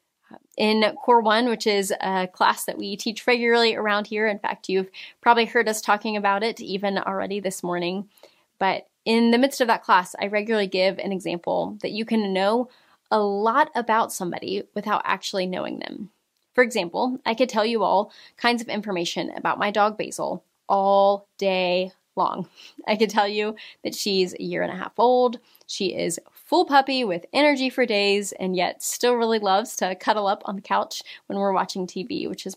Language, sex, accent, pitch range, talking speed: English, female, American, 195-240 Hz, 190 wpm